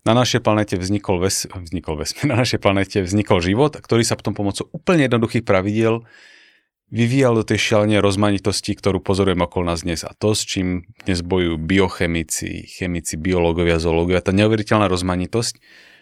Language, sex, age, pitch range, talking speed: Slovak, male, 30-49, 90-110 Hz, 155 wpm